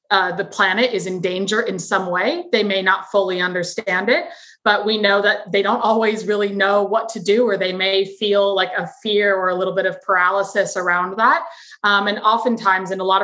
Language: English